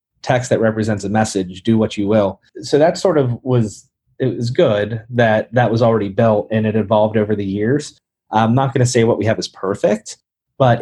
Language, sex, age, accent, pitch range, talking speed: English, male, 30-49, American, 110-130 Hz, 215 wpm